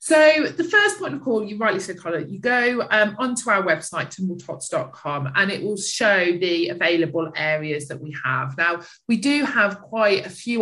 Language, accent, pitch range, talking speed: English, British, 175-230 Hz, 190 wpm